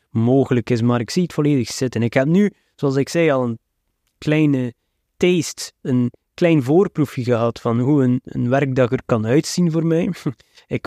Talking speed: 180 wpm